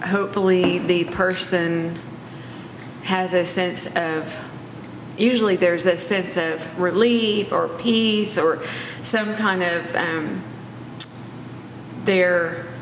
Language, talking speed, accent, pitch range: English, 100 wpm, American, 165-190 Hz